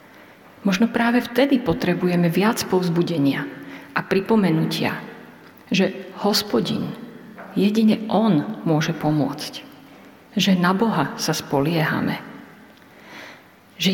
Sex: female